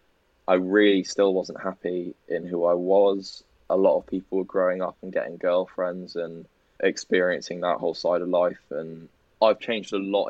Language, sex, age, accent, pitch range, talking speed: English, male, 10-29, British, 90-130 Hz, 180 wpm